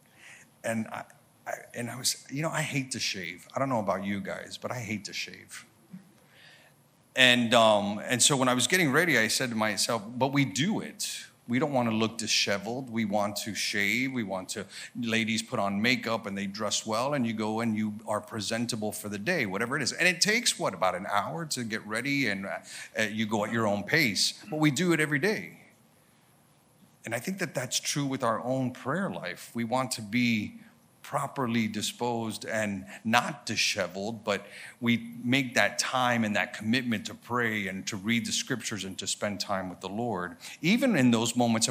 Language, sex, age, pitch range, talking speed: English, male, 40-59, 105-130 Hz, 210 wpm